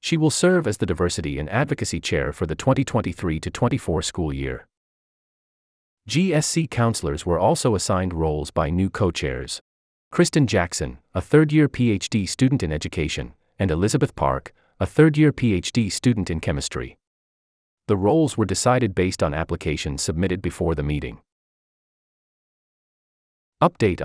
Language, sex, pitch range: English, male, 75-120 Hz